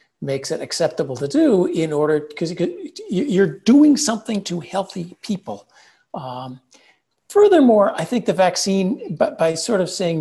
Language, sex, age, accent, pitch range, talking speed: English, male, 50-69, American, 135-180 Hz, 155 wpm